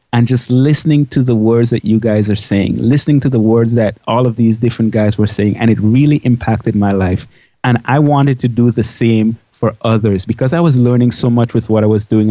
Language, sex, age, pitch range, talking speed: English, male, 30-49, 110-130 Hz, 240 wpm